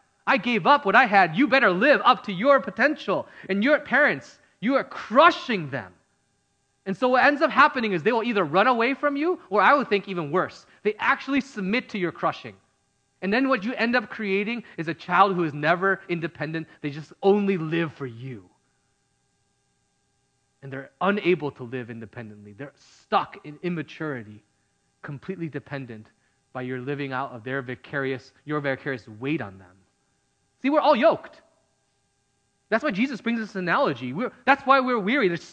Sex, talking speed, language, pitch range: male, 180 wpm, English, 135-215 Hz